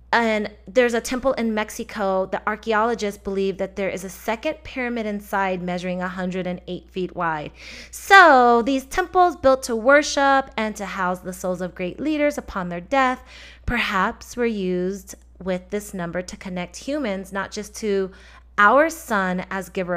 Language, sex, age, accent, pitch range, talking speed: English, female, 30-49, American, 185-230 Hz, 160 wpm